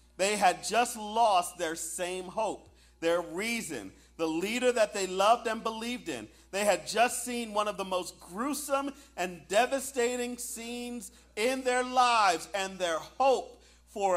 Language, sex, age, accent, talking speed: English, male, 40-59, American, 155 wpm